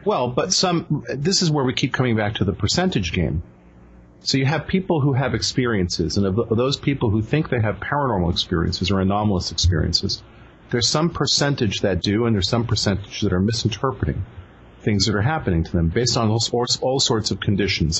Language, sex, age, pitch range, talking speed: English, male, 40-59, 95-125 Hz, 195 wpm